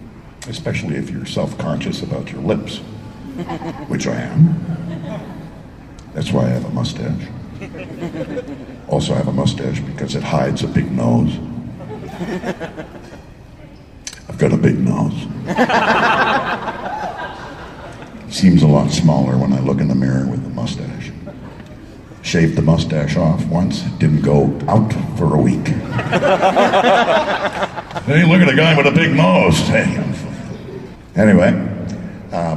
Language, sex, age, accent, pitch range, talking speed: English, male, 60-79, American, 75-125 Hz, 125 wpm